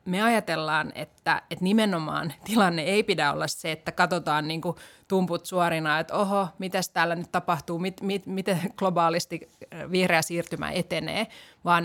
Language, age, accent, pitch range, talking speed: Finnish, 30-49, native, 170-200 Hz, 145 wpm